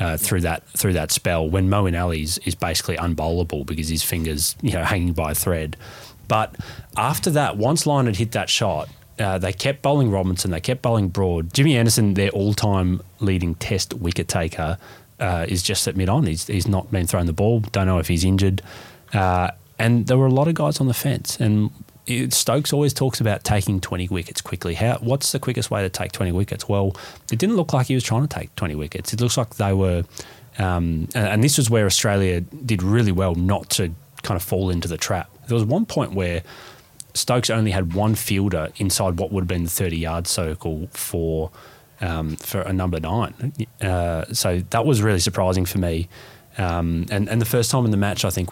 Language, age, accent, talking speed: English, 20-39, Australian, 210 wpm